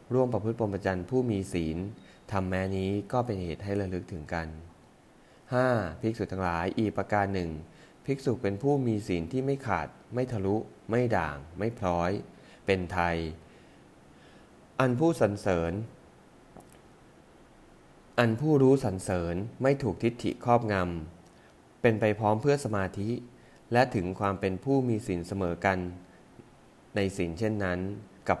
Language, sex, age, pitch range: English, male, 20-39, 90-115 Hz